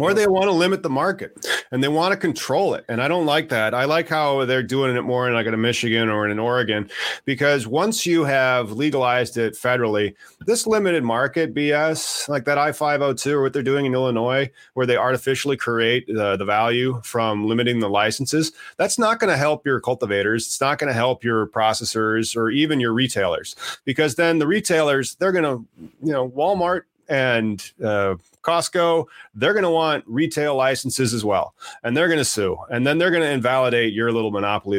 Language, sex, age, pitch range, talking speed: English, male, 30-49, 115-150 Hz, 200 wpm